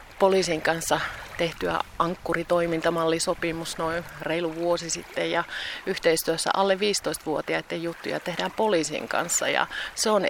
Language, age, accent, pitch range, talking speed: Finnish, 30-49, native, 150-180 Hz, 110 wpm